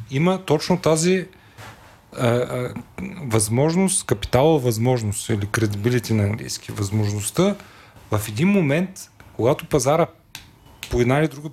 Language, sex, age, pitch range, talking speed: English, male, 40-59, 115-160 Hz, 115 wpm